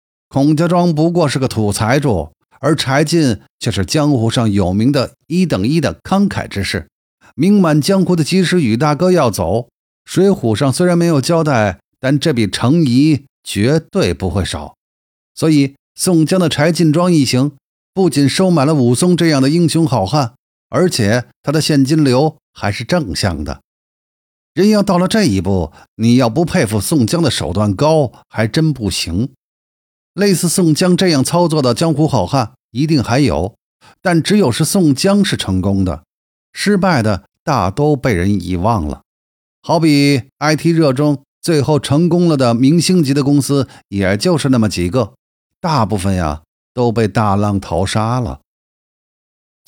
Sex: male